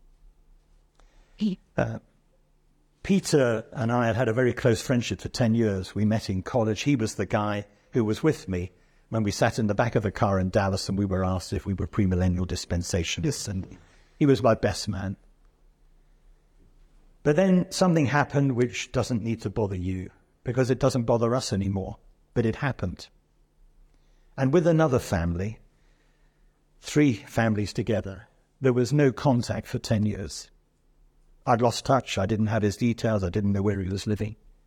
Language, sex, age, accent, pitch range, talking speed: English, male, 50-69, British, 100-130 Hz, 170 wpm